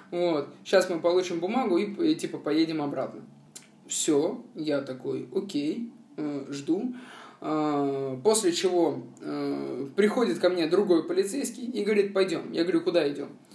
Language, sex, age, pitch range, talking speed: Russian, male, 20-39, 145-205 Hz, 135 wpm